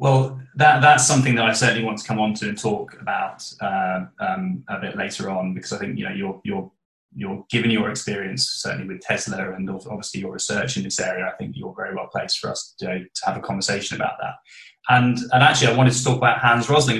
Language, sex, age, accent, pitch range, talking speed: English, male, 20-39, British, 105-135 Hz, 235 wpm